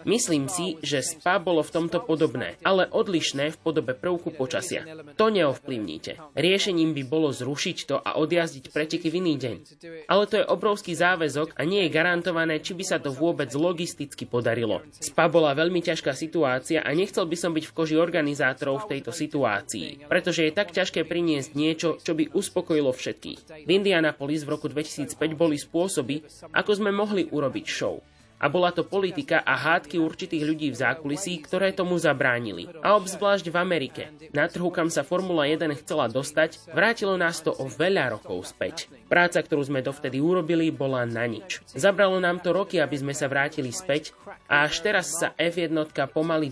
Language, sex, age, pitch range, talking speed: Slovak, male, 20-39, 145-175 Hz, 175 wpm